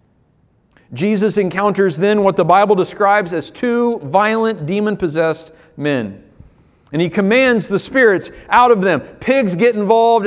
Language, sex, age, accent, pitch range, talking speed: English, male, 40-59, American, 145-215 Hz, 135 wpm